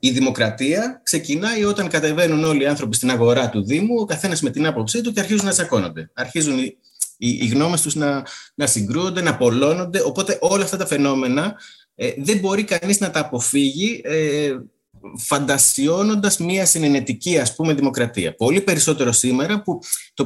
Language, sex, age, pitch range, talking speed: Greek, male, 20-39, 125-185 Hz, 160 wpm